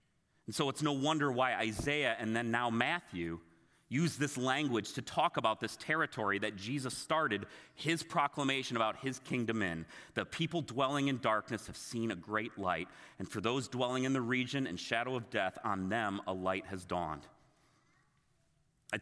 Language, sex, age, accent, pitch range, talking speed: English, male, 30-49, American, 110-140 Hz, 175 wpm